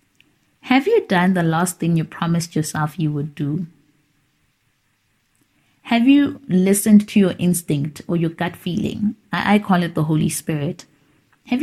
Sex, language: female, English